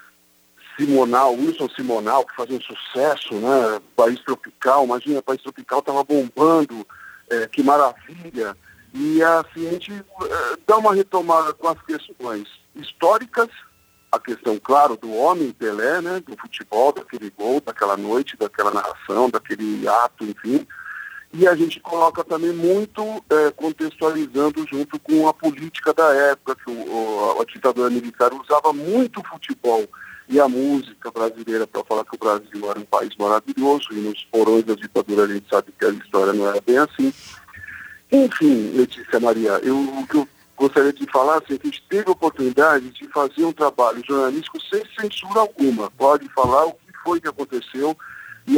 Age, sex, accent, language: 50-69, male, Brazilian, Portuguese